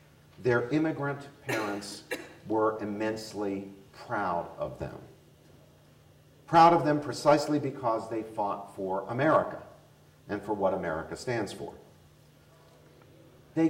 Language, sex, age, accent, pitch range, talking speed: English, male, 50-69, American, 110-150 Hz, 105 wpm